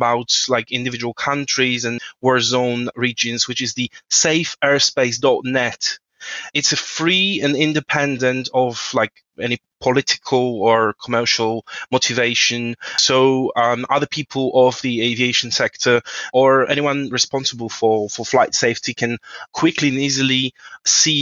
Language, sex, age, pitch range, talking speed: English, male, 20-39, 115-140 Hz, 125 wpm